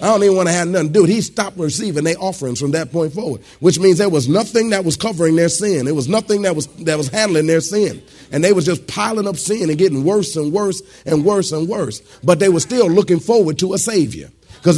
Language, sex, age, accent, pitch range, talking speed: English, male, 40-59, American, 145-190 Hz, 255 wpm